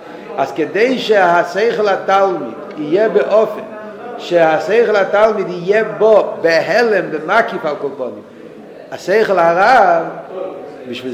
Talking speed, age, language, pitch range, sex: 85 wpm, 50-69, Hebrew, 180-230 Hz, male